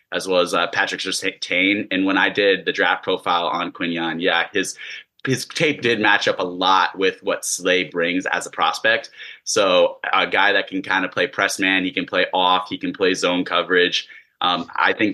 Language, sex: English, male